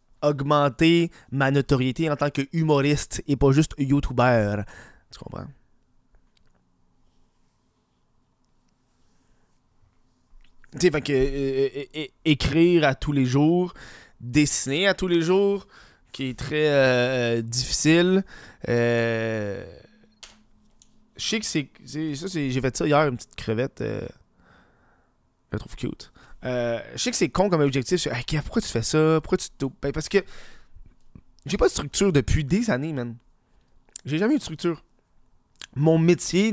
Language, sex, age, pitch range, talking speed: French, male, 20-39, 125-160 Hz, 145 wpm